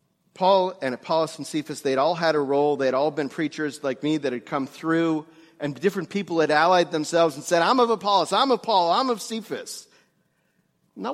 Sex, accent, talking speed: male, American, 205 wpm